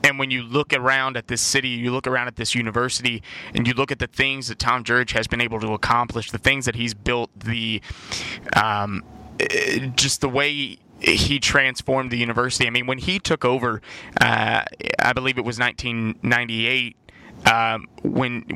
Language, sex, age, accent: English, male, 20-39, American